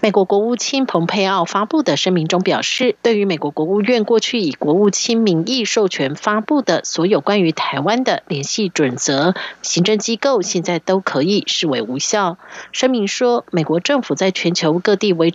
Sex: female